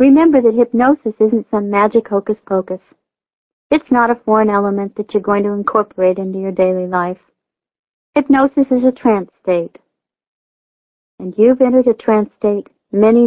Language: English